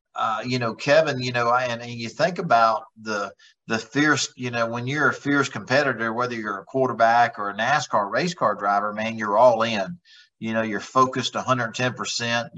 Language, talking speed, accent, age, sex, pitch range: English, 195 wpm, American, 50-69, male, 115-140 Hz